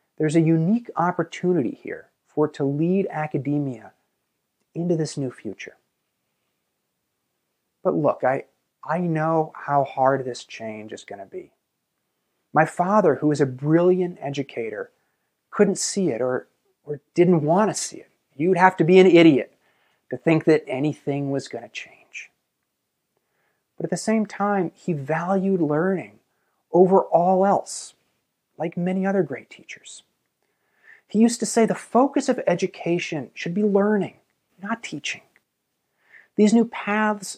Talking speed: 145 wpm